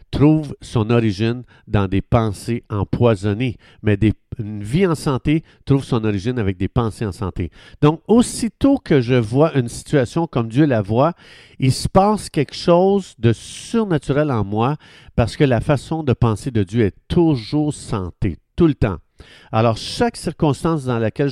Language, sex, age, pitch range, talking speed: French, male, 50-69, 110-145 Hz, 165 wpm